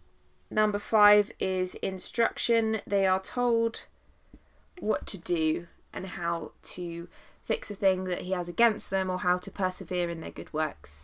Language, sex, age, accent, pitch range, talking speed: English, female, 20-39, British, 175-210 Hz, 160 wpm